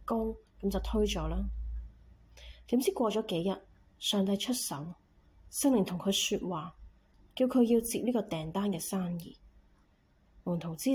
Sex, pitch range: female, 175-230 Hz